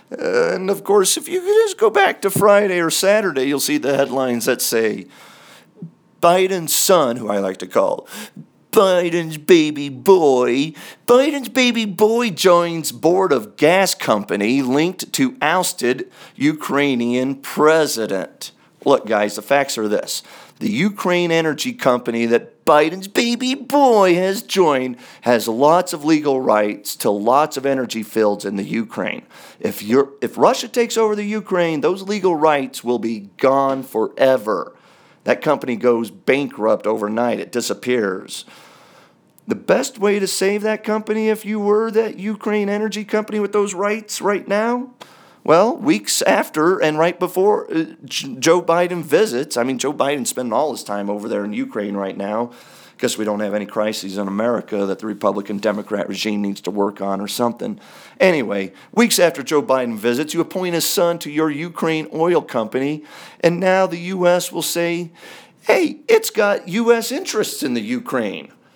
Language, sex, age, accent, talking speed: English, male, 50-69, American, 160 wpm